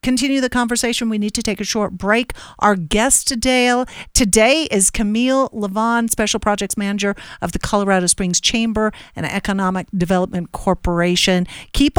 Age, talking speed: 50-69, 150 wpm